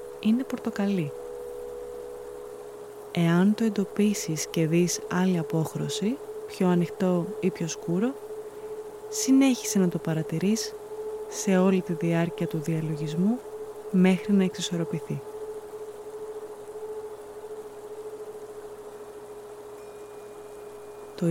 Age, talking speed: 20-39, 80 wpm